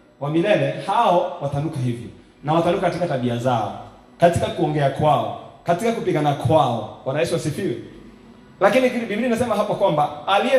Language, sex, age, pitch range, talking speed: English, male, 30-49, 125-180 Hz, 140 wpm